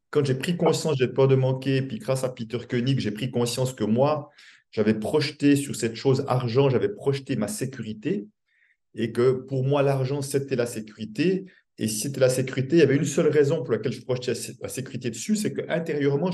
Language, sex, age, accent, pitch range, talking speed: French, male, 40-59, French, 110-140 Hz, 210 wpm